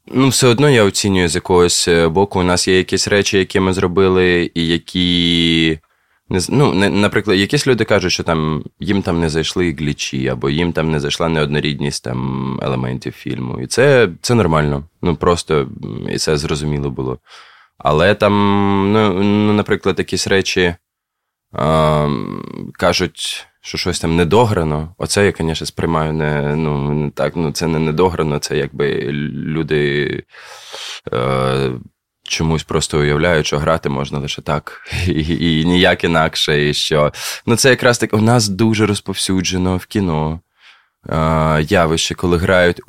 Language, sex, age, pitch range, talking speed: Ukrainian, male, 20-39, 75-95 Hz, 150 wpm